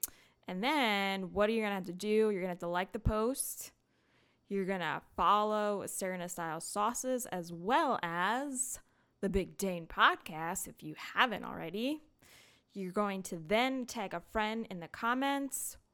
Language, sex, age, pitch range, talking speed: English, female, 20-39, 190-245 Hz, 175 wpm